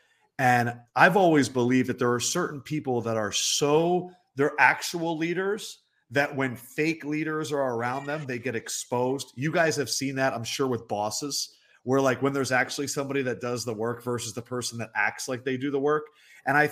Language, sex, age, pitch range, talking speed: English, male, 30-49, 120-145 Hz, 200 wpm